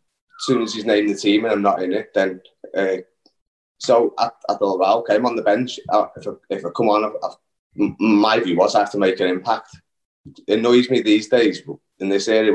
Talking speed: 220 wpm